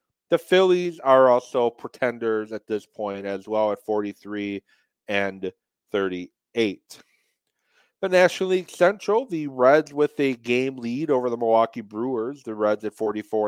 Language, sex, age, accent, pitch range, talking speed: English, male, 30-49, American, 105-125 Hz, 145 wpm